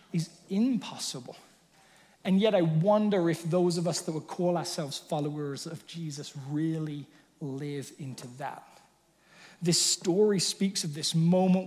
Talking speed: 140 wpm